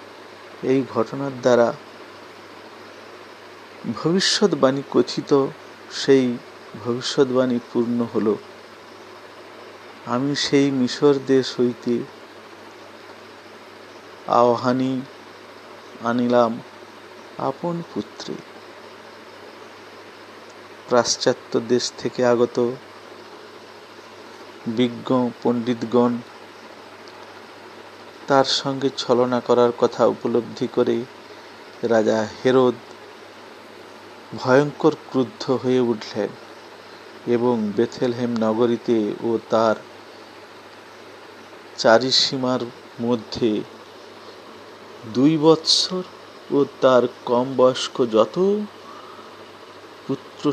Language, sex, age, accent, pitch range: Bengali, male, 50-69, native, 120-145 Hz